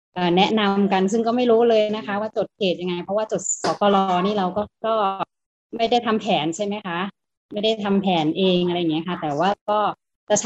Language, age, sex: Thai, 20-39, female